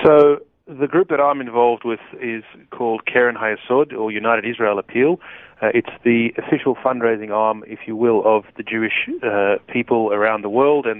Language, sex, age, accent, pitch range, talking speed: English, male, 30-49, Australian, 110-125 Hz, 180 wpm